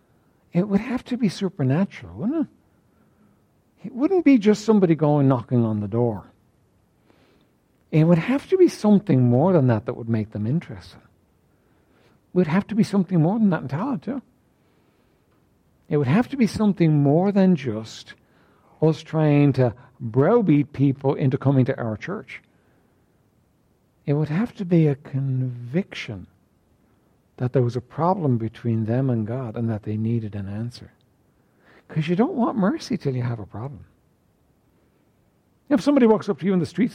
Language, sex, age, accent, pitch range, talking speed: English, male, 60-79, American, 125-195 Hz, 170 wpm